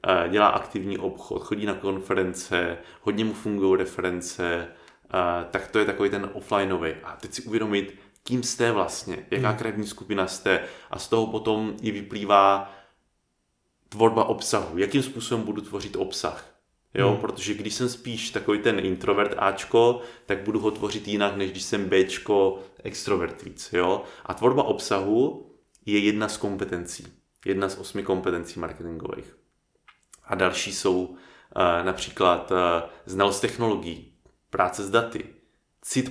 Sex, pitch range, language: male, 95-105 Hz, Czech